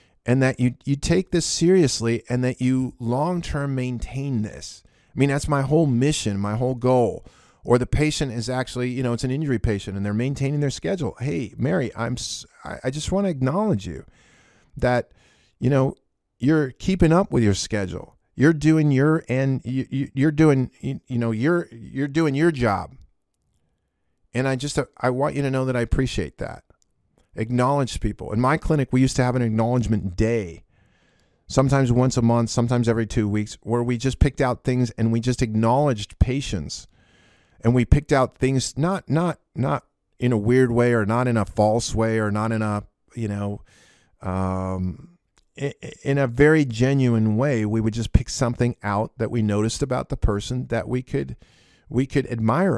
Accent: American